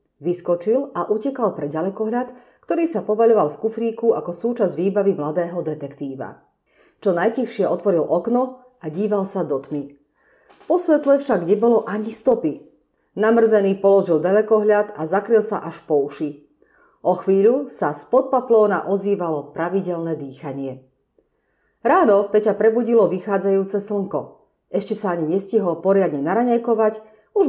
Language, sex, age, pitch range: Slovak, female, 40-59, 175-230 Hz